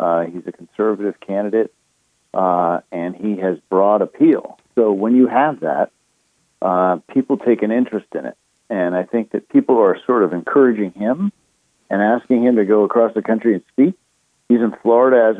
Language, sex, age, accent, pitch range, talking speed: English, male, 50-69, American, 95-120 Hz, 185 wpm